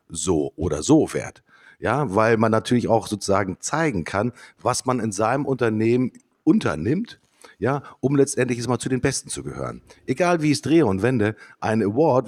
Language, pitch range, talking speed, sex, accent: German, 100-125 Hz, 170 wpm, male, German